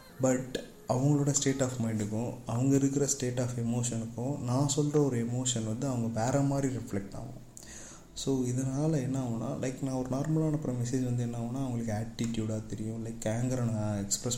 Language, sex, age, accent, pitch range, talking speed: Tamil, male, 30-49, native, 115-140 Hz, 165 wpm